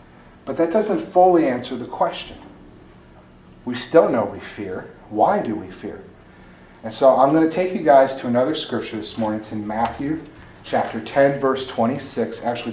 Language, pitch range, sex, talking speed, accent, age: English, 115-160 Hz, male, 175 wpm, American, 40-59